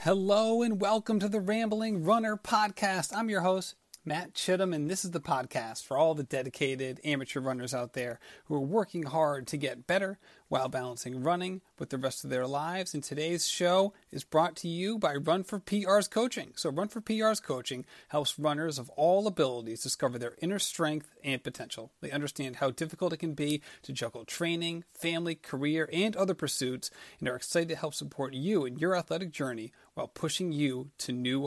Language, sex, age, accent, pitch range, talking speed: English, male, 30-49, American, 135-180 Hz, 195 wpm